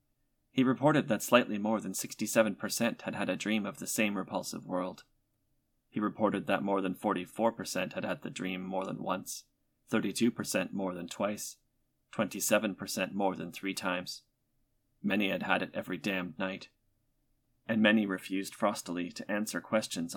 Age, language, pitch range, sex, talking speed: 30-49, English, 95-120 Hz, male, 155 wpm